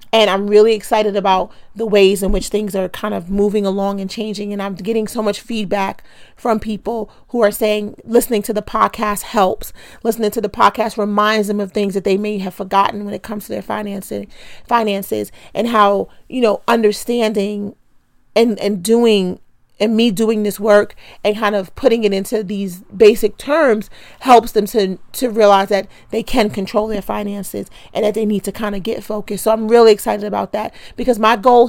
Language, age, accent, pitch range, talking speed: English, 40-59, American, 200-225 Hz, 195 wpm